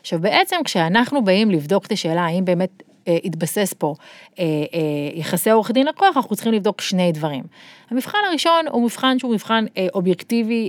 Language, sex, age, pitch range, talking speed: Hebrew, female, 30-49, 180-235 Hz, 175 wpm